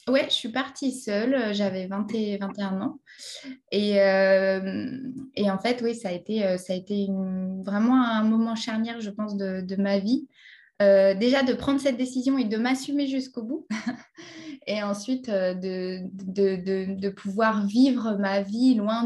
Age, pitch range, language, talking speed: 20-39, 200-255 Hz, French, 175 wpm